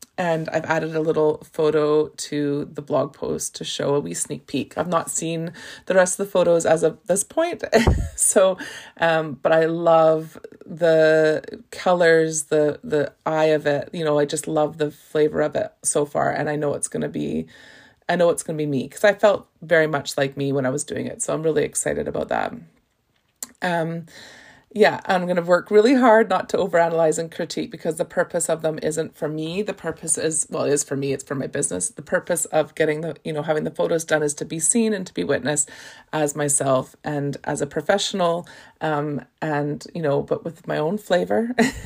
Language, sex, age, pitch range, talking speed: English, female, 30-49, 145-175 Hz, 215 wpm